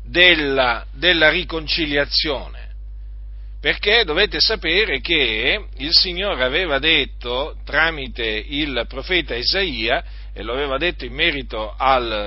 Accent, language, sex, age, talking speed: native, Italian, male, 40-59, 110 wpm